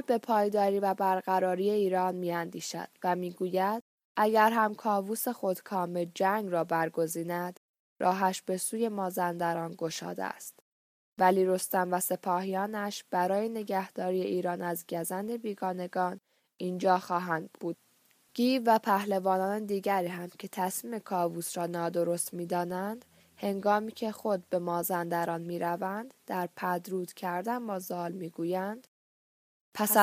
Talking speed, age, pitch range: 120 wpm, 10-29, 175-205 Hz